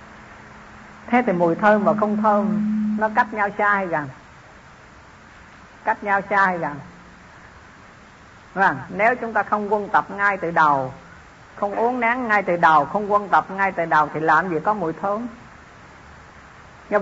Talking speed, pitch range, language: 165 wpm, 175-220 Hz, Vietnamese